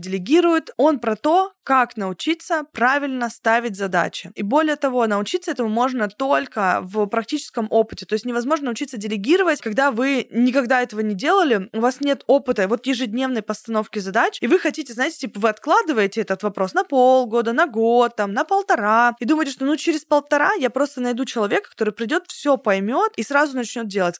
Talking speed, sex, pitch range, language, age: 180 wpm, female, 225-285 Hz, Russian, 20-39